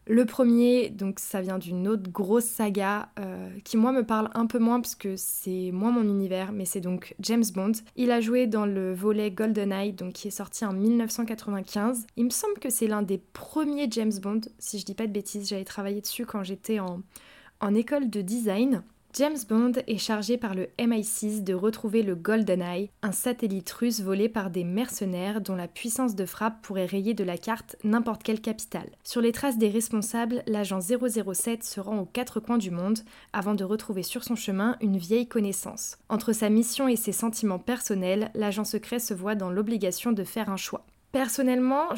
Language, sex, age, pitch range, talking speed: French, female, 20-39, 195-230 Hz, 195 wpm